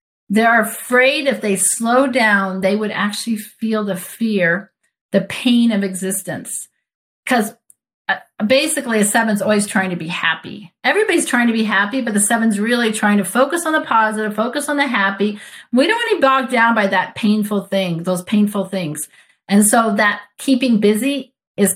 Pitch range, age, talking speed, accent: 180-230 Hz, 40-59, 175 wpm, American